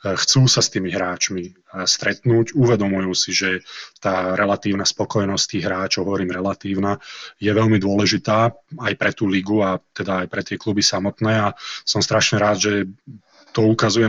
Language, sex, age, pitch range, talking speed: Slovak, male, 20-39, 100-110 Hz, 160 wpm